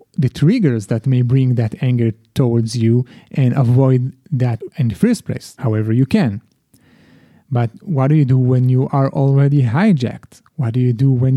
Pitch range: 125-175 Hz